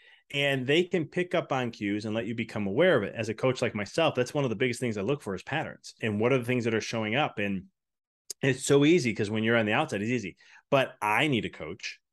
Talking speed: 275 wpm